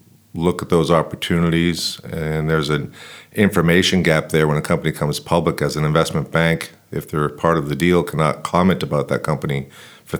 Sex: male